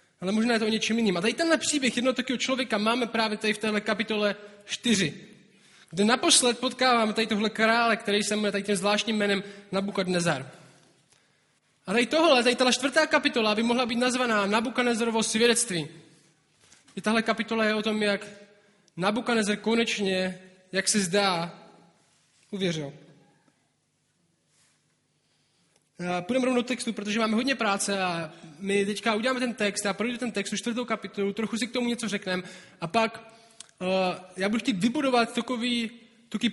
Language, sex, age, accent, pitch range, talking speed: Czech, male, 20-39, native, 195-240 Hz, 160 wpm